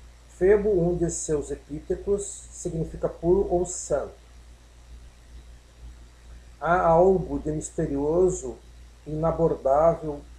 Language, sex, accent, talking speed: Portuguese, male, Brazilian, 80 wpm